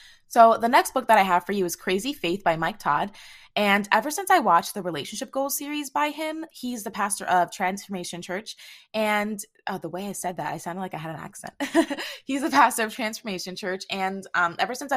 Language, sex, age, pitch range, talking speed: English, female, 20-39, 175-220 Hz, 220 wpm